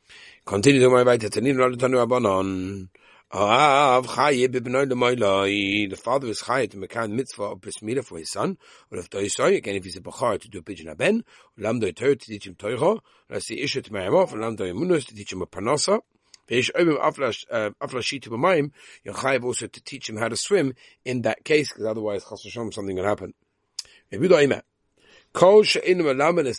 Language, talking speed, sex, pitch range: English, 105 wpm, male, 105-135 Hz